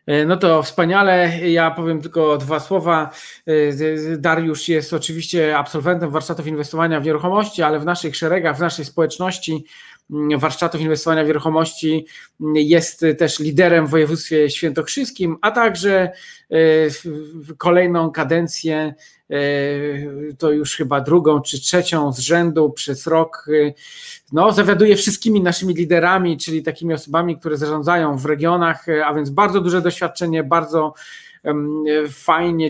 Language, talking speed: Polish, 125 wpm